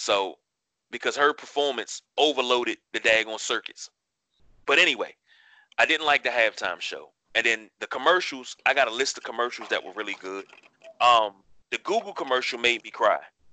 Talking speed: 165 wpm